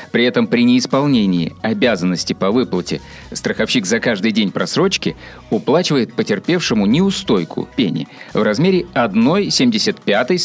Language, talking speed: Russian, 110 wpm